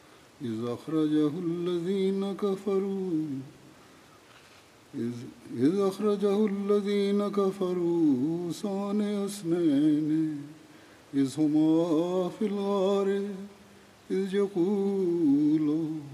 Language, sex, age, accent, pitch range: Malayalam, male, 50-69, native, 155-200 Hz